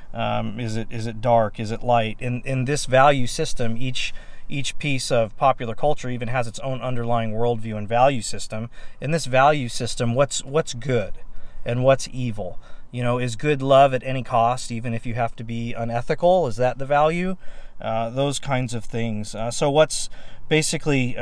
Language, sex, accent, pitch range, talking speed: English, male, American, 115-140 Hz, 190 wpm